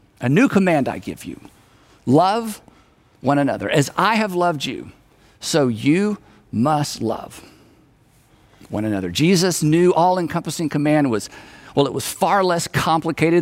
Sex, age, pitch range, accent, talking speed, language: male, 50-69, 130-180 Hz, American, 145 wpm, English